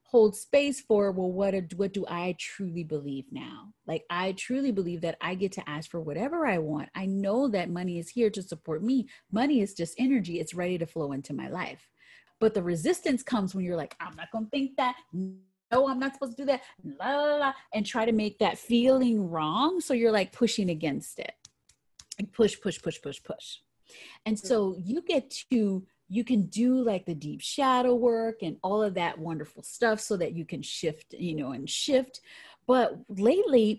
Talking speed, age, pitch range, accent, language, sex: 210 wpm, 30-49, 180-250 Hz, American, English, female